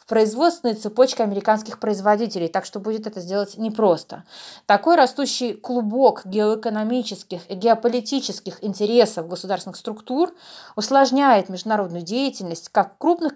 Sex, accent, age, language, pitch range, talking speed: female, native, 20-39, Russian, 195-250 Hz, 110 wpm